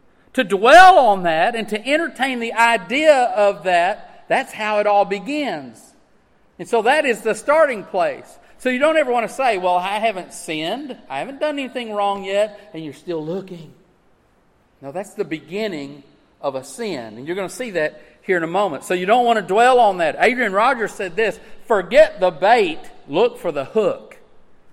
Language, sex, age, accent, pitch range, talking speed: English, male, 40-59, American, 170-240 Hz, 195 wpm